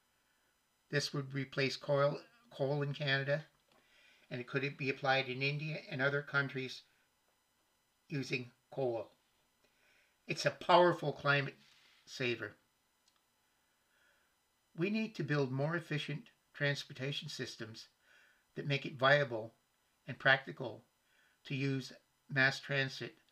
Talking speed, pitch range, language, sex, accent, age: 110 wpm, 130-150 Hz, English, male, American, 60-79